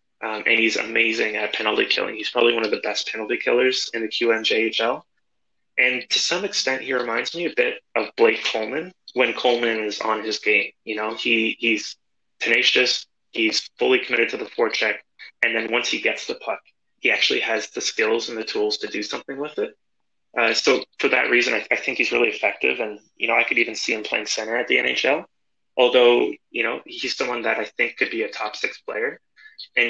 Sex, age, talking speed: male, 20-39, 215 wpm